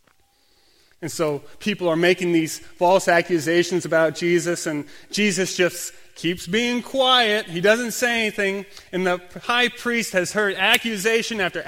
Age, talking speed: 30-49, 145 wpm